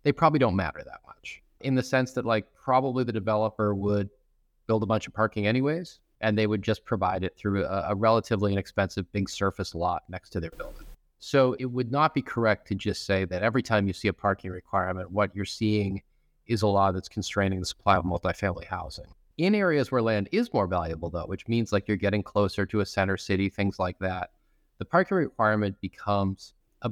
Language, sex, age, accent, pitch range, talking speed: English, male, 30-49, American, 100-130 Hz, 210 wpm